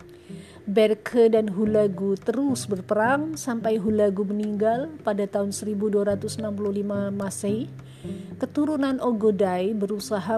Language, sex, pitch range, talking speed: Indonesian, female, 185-225 Hz, 85 wpm